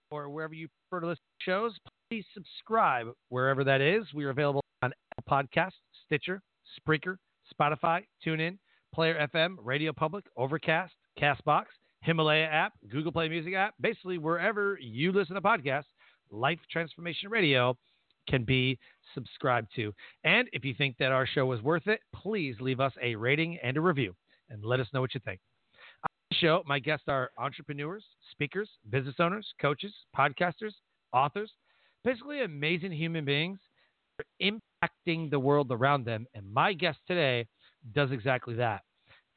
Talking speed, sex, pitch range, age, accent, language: 155 wpm, male, 130-170 Hz, 40-59, American, English